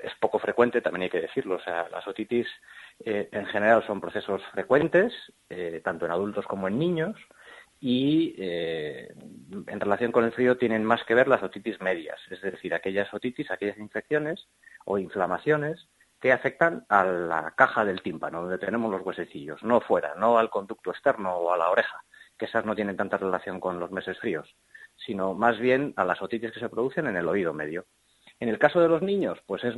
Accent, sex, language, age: Spanish, male, Spanish, 30-49